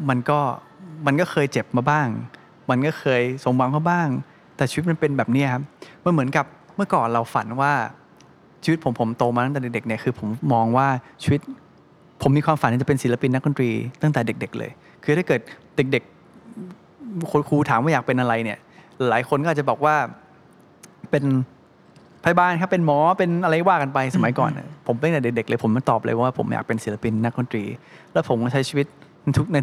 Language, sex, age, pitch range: Thai, male, 20-39, 120-155 Hz